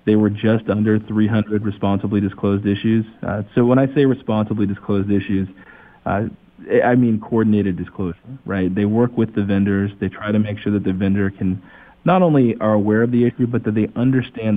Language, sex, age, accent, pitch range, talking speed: English, male, 40-59, American, 100-115 Hz, 195 wpm